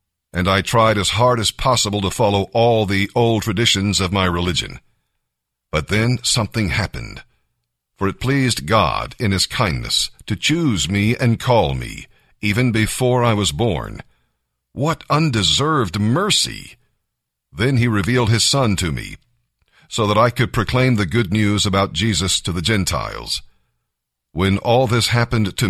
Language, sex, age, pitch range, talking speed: English, male, 50-69, 95-120 Hz, 155 wpm